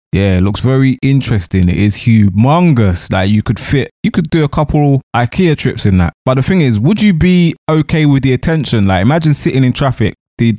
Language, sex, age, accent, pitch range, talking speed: English, male, 20-39, British, 105-135 Hz, 220 wpm